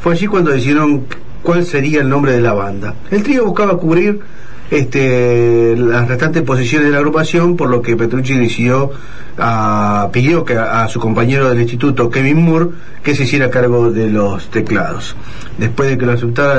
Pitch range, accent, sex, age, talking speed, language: 115-140 Hz, Argentinian, male, 40-59, 180 wpm, Spanish